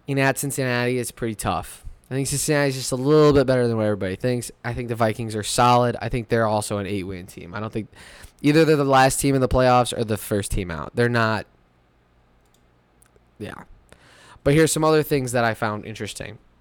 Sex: male